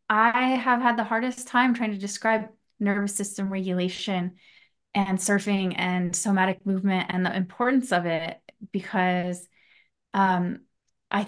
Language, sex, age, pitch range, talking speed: English, female, 20-39, 180-220 Hz, 135 wpm